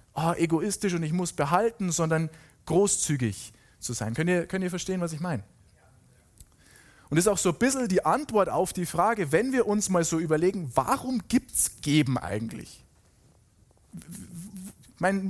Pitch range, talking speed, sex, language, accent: 150-205 Hz, 160 wpm, male, German, German